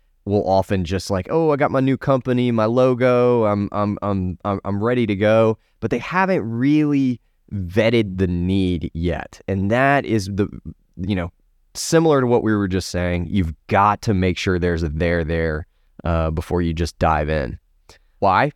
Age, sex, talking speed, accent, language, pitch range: 20-39, male, 180 wpm, American, English, 90-125 Hz